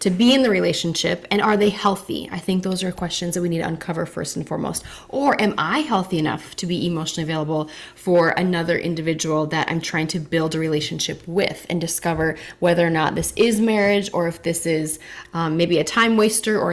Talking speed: 215 wpm